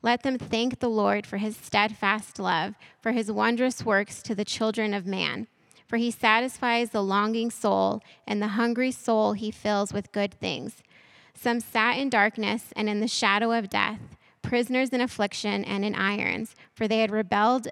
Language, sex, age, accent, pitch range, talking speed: English, female, 20-39, American, 205-235 Hz, 180 wpm